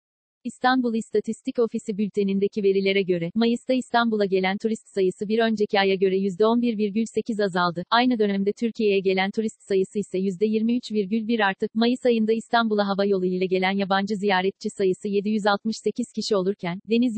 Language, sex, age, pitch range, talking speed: Turkish, female, 40-59, 195-230 Hz, 140 wpm